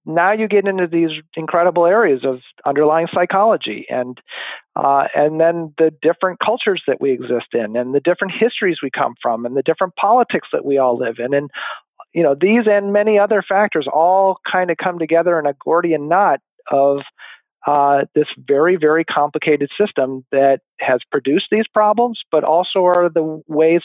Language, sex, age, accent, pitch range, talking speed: English, male, 40-59, American, 140-190 Hz, 180 wpm